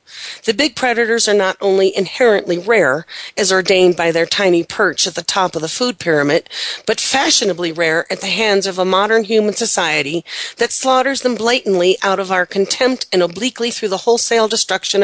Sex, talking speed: female, 185 wpm